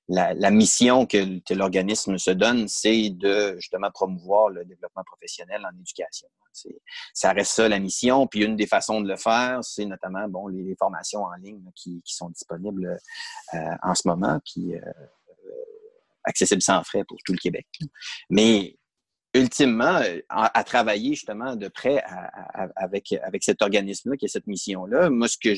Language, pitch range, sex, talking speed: English, 100-135 Hz, male, 175 wpm